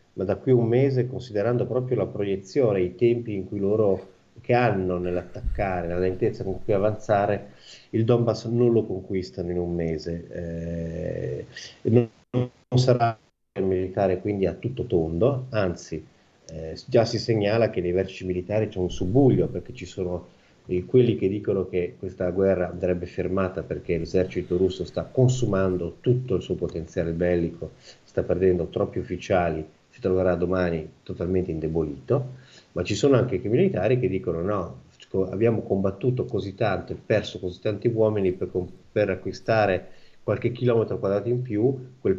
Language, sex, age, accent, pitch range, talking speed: Italian, male, 30-49, native, 90-110 Hz, 160 wpm